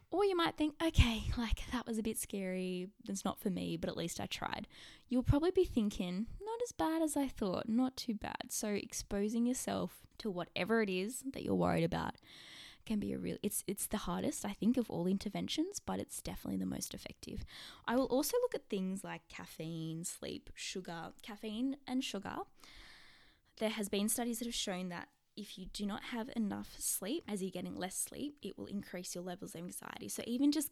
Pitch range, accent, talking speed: 180-250 Hz, Australian, 205 wpm